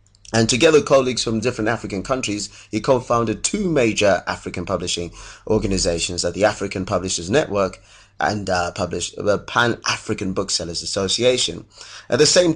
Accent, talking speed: British, 145 wpm